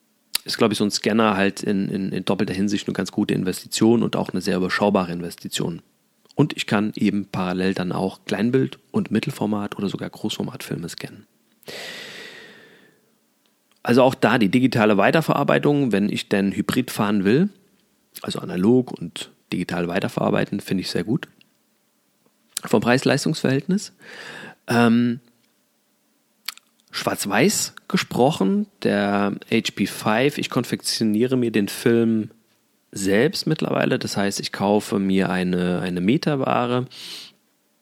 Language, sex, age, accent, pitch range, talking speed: German, male, 30-49, German, 95-115 Hz, 125 wpm